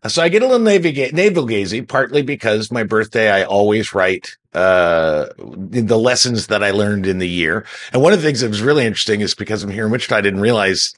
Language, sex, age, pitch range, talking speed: English, male, 50-69, 105-140 Hz, 220 wpm